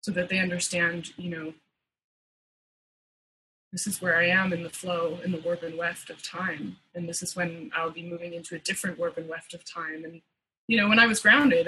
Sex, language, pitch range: female, English, 175-225 Hz